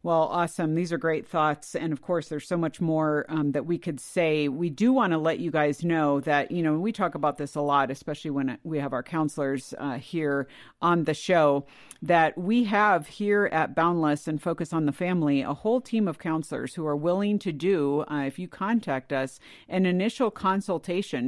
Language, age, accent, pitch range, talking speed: English, 50-69, American, 145-180 Hz, 210 wpm